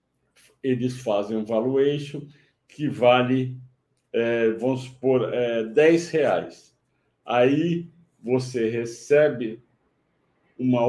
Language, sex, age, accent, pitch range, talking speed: Portuguese, male, 60-79, Brazilian, 115-135 Hz, 85 wpm